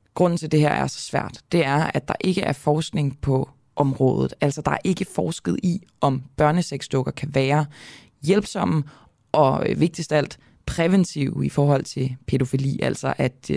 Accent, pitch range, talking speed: native, 135-170 Hz, 165 wpm